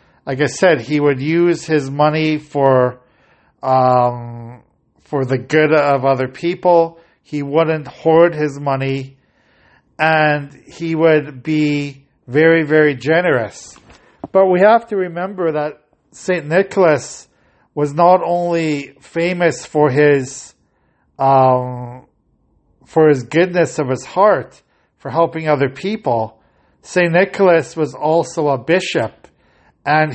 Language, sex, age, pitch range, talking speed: English, male, 50-69, 135-165 Hz, 120 wpm